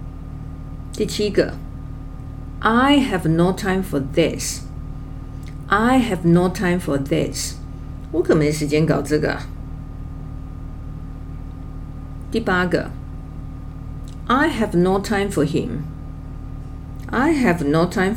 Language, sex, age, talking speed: English, female, 50-69, 80 wpm